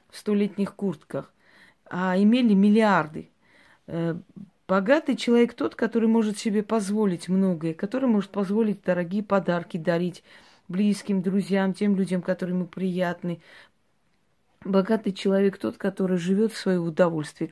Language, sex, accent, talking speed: Russian, female, native, 120 wpm